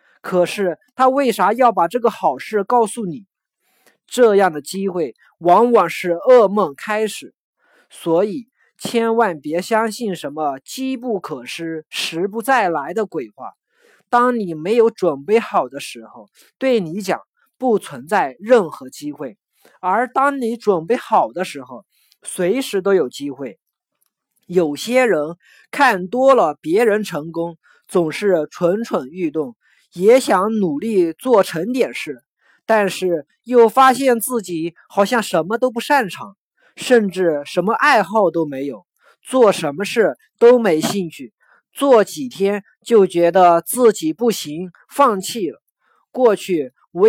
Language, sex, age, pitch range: Chinese, male, 20-39, 170-235 Hz